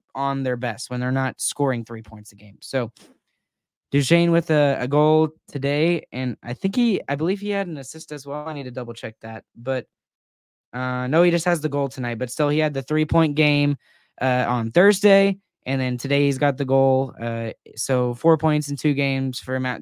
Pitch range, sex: 125-155 Hz, male